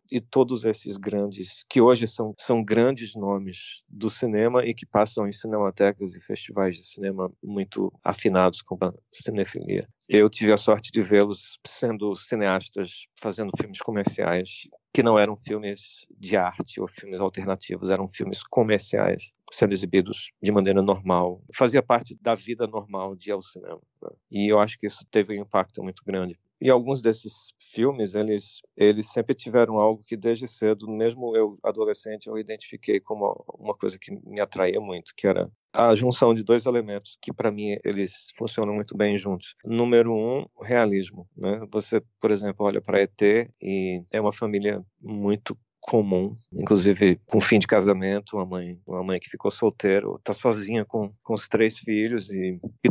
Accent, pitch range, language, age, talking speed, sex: Brazilian, 100-115 Hz, Portuguese, 40-59, 170 wpm, male